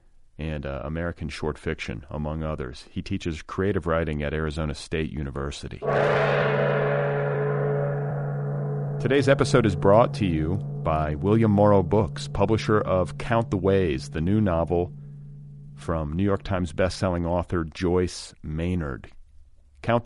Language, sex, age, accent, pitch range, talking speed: English, male, 40-59, American, 75-105 Hz, 125 wpm